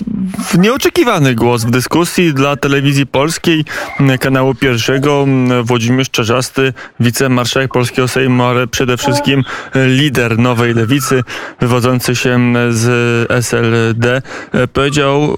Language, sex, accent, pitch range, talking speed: Polish, male, native, 125-150 Hz, 100 wpm